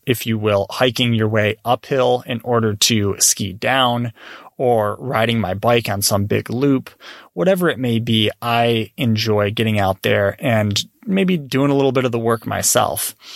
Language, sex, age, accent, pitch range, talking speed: English, male, 20-39, American, 110-130 Hz, 175 wpm